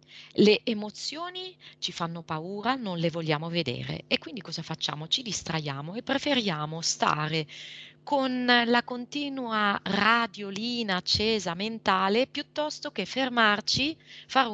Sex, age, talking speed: female, 30-49, 115 wpm